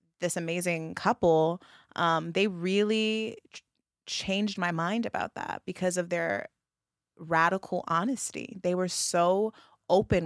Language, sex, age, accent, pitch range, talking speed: English, female, 20-39, American, 165-210 Hz, 115 wpm